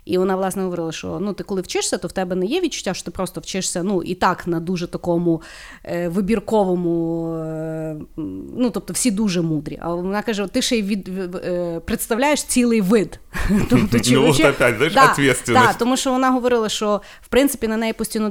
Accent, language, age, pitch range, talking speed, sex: native, Ukrainian, 30-49, 175-215 Hz, 190 wpm, female